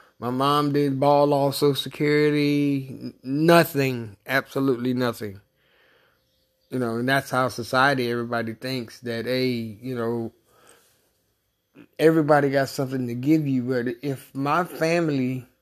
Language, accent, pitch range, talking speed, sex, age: English, American, 125-145 Hz, 125 wpm, male, 30-49